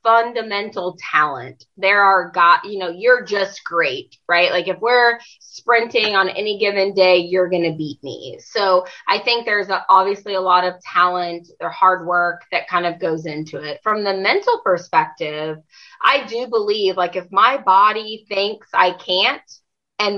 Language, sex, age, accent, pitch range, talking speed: English, female, 20-39, American, 180-230 Hz, 165 wpm